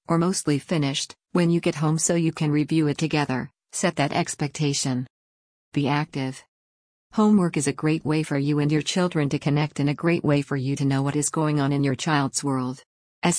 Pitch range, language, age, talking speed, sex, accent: 140-165 Hz, English, 50-69, 210 wpm, female, American